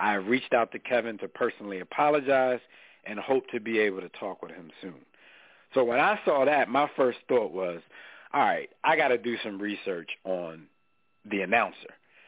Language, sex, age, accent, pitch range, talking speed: English, male, 40-59, American, 105-140 Hz, 185 wpm